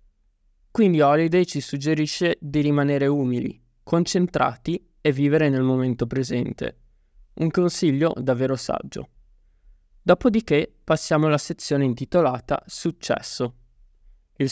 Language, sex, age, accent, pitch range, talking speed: Italian, male, 20-39, native, 125-160 Hz, 100 wpm